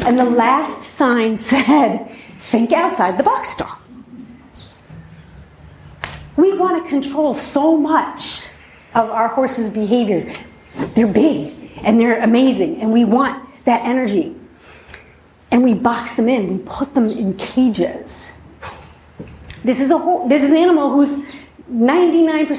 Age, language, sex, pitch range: 40-59, English, female, 225-290 Hz